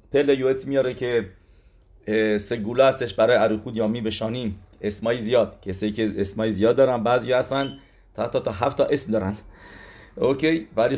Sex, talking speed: male, 165 wpm